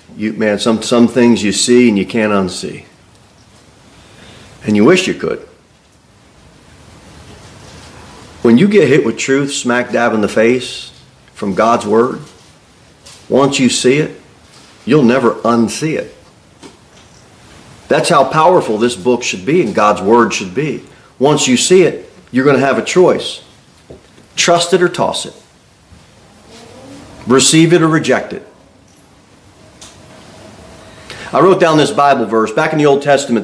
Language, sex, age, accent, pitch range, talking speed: English, male, 40-59, American, 120-150 Hz, 145 wpm